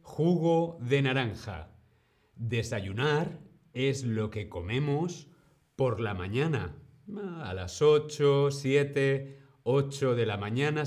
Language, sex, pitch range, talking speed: Spanish, male, 110-155 Hz, 105 wpm